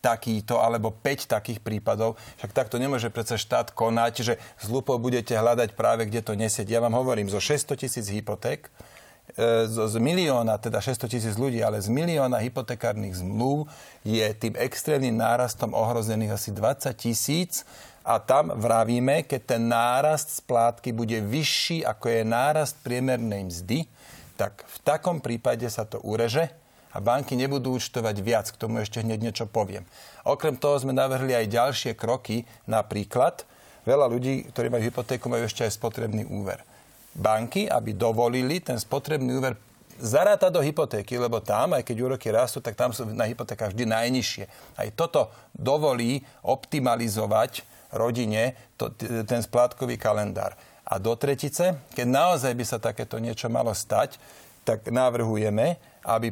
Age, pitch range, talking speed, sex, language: 40-59, 115-130 Hz, 150 wpm, male, Slovak